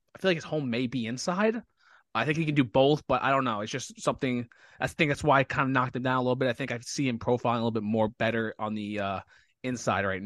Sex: male